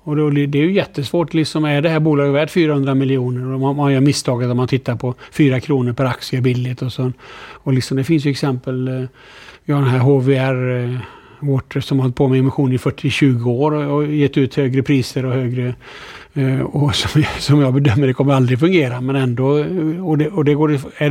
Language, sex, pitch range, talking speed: Swedish, male, 130-150 Hz, 200 wpm